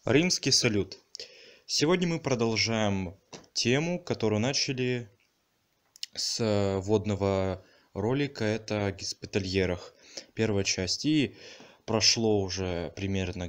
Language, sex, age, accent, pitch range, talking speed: Russian, male, 20-39, native, 100-120 Hz, 85 wpm